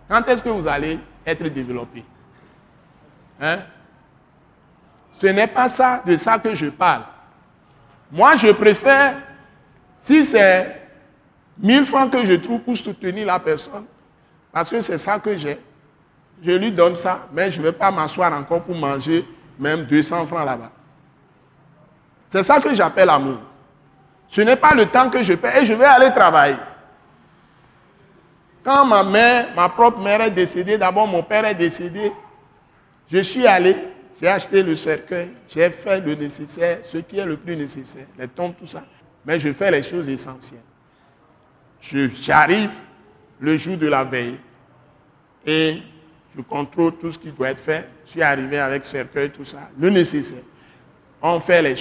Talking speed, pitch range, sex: 165 wpm, 145-200 Hz, male